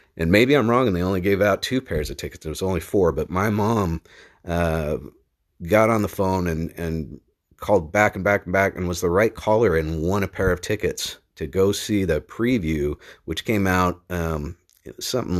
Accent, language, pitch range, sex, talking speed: American, English, 85-100 Hz, male, 210 wpm